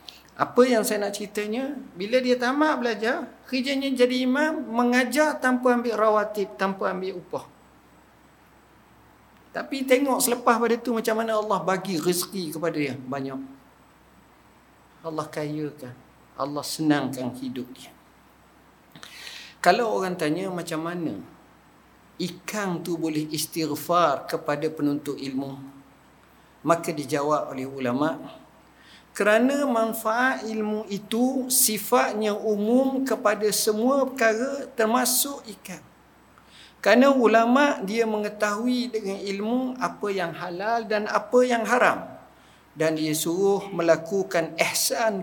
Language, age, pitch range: Indonesian, 50-69, 160-235 Hz